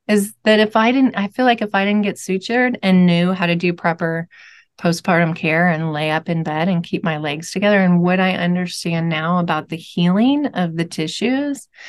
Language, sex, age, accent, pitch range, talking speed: English, female, 30-49, American, 165-210 Hz, 210 wpm